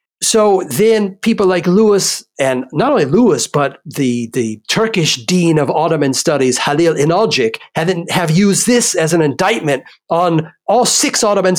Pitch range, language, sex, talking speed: 140-185 Hz, English, male, 155 wpm